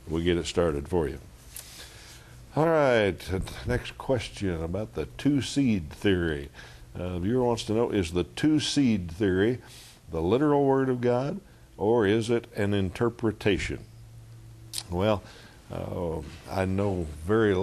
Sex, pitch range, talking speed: male, 85-110 Hz, 130 wpm